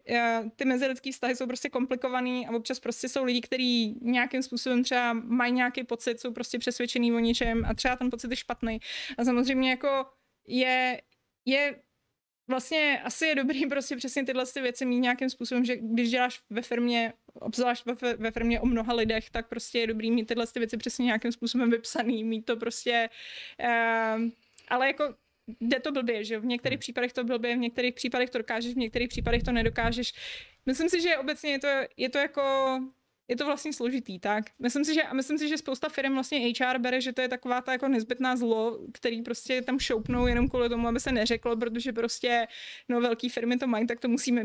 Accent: native